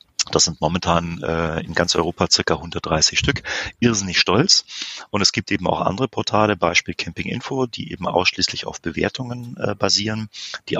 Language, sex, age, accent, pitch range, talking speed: German, male, 40-59, German, 90-115 Hz, 160 wpm